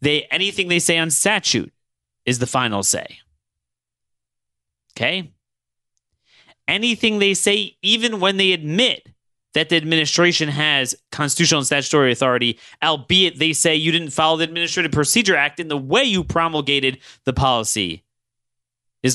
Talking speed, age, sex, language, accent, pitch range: 140 wpm, 30-49, male, English, American, 120-190 Hz